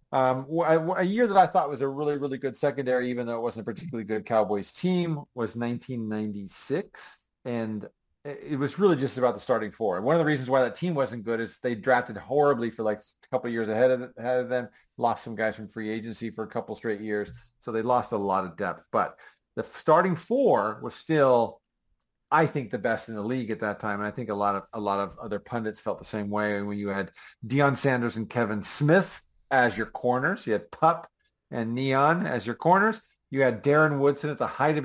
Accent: American